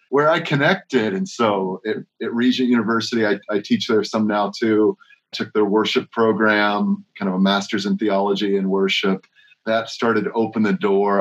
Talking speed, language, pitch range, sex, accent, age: 180 wpm, English, 105-140 Hz, male, American, 30-49